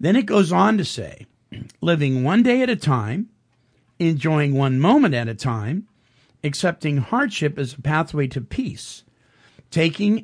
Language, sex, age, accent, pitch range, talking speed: English, male, 50-69, American, 130-165 Hz, 150 wpm